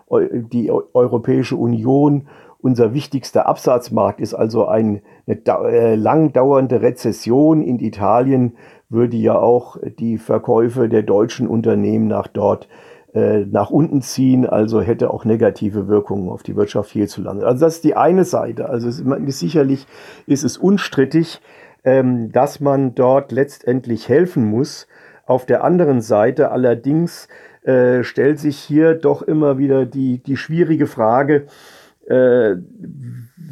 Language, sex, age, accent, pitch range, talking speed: German, male, 50-69, German, 120-145 Hz, 140 wpm